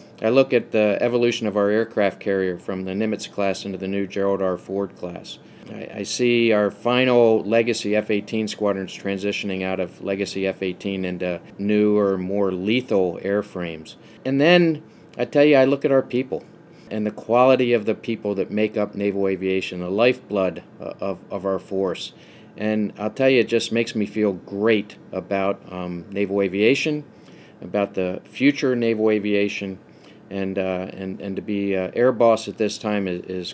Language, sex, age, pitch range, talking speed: English, male, 50-69, 95-120 Hz, 175 wpm